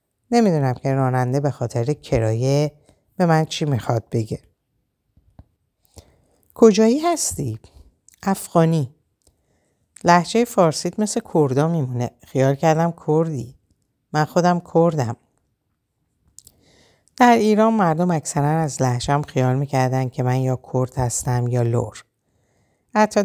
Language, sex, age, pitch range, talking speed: Persian, female, 60-79, 120-155 Hz, 105 wpm